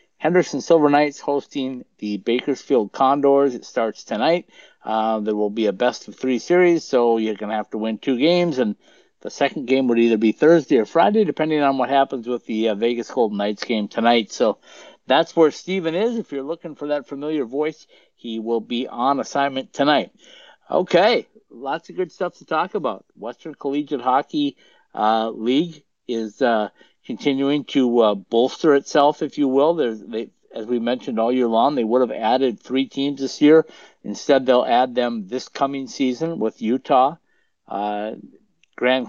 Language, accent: English, American